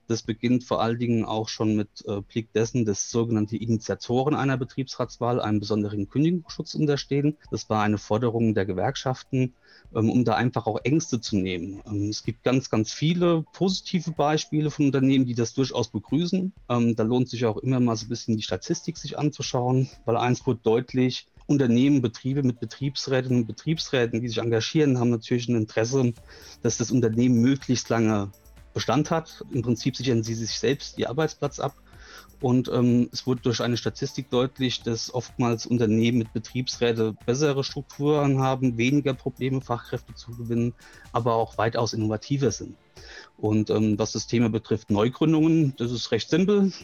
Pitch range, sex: 110-135 Hz, male